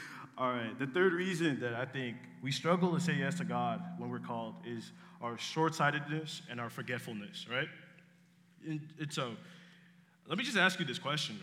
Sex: male